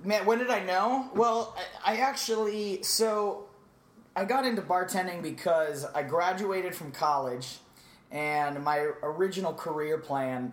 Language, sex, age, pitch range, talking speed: English, male, 30-49, 140-180 Hz, 130 wpm